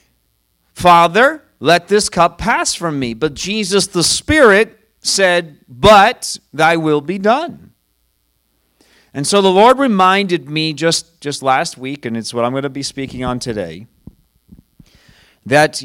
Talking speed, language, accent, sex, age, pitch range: 145 wpm, English, American, male, 40-59, 110-155 Hz